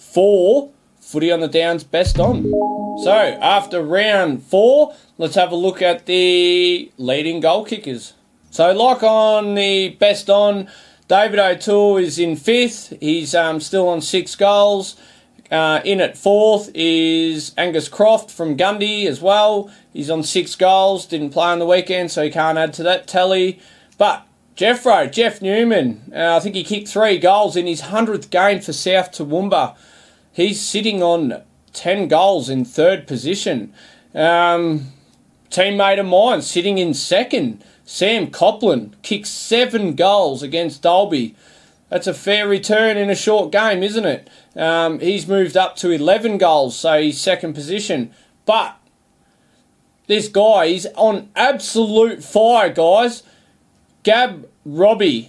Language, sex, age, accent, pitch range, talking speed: English, male, 20-39, Australian, 170-215 Hz, 145 wpm